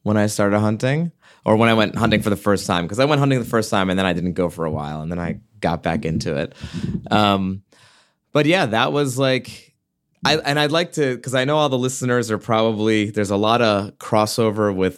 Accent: American